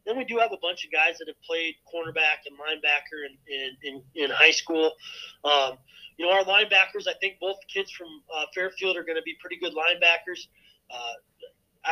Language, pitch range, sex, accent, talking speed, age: English, 155-195 Hz, male, American, 210 wpm, 30-49